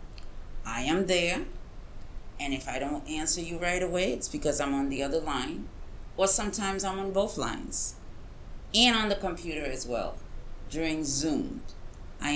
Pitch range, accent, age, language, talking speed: 135-175 Hz, American, 40-59, English, 160 wpm